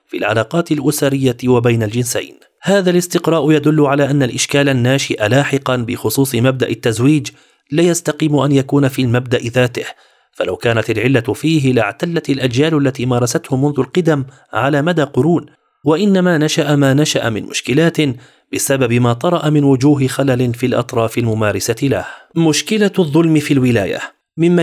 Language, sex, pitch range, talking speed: Arabic, male, 120-150 Hz, 140 wpm